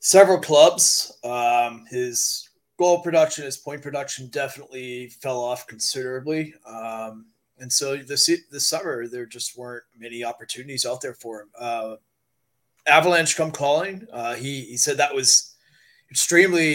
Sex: male